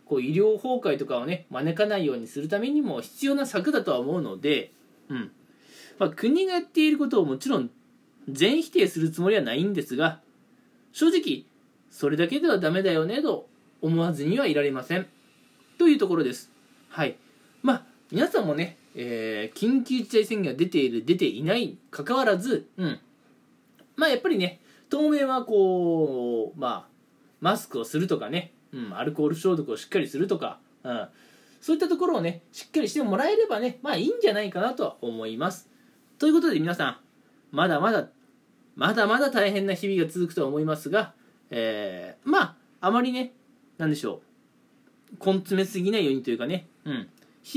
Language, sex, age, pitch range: Japanese, male, 20-39, 170-275 Hz